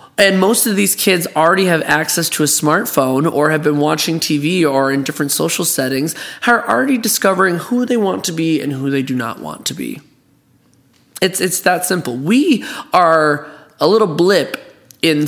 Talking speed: 185 wpm